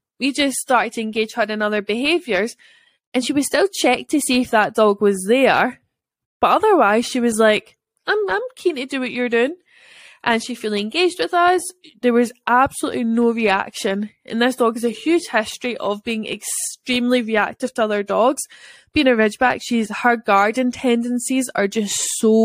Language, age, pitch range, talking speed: English, 10-29, 220-270 Hz, 185 wpm